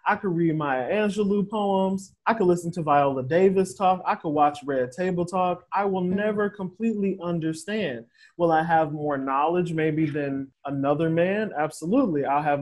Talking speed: 170 wpm